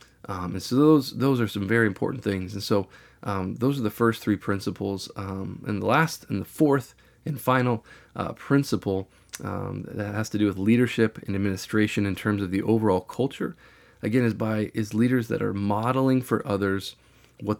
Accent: American